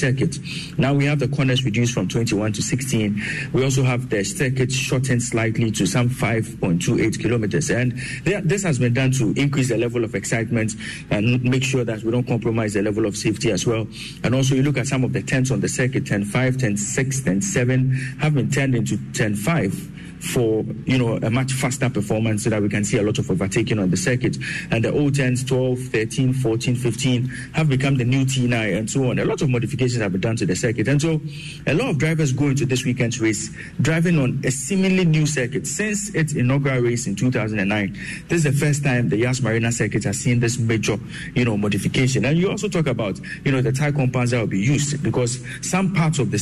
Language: English